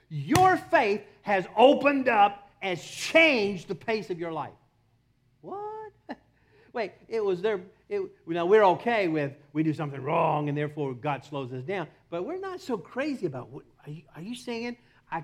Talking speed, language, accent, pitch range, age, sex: 165 wpm, English, American, 130-200 Hz, 50-69, male